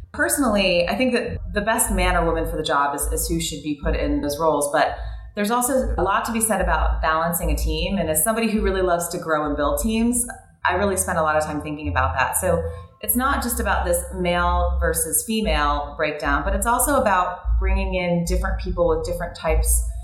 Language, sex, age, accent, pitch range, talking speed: English, female, 30-49, American, 150-195 Hz, 225 wpm